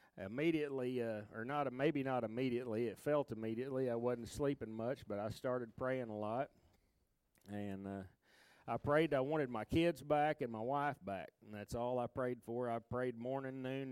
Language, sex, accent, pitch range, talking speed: English, male, American, 110-140 Hz, 185 wpm